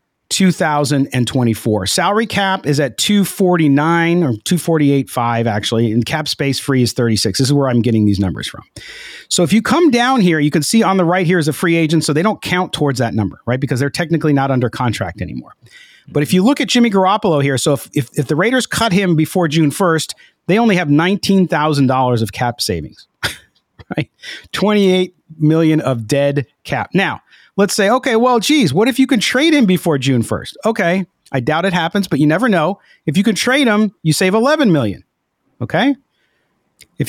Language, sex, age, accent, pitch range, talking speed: English, male, 40-59, American, 135-190 Hz, 195 wpm